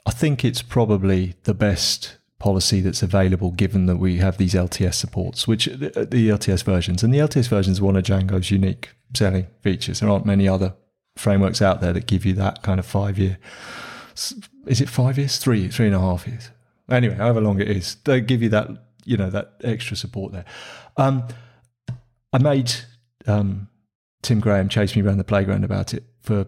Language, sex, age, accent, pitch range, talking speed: English, male, 30-49, British, 100-120 Hz, 195 wpm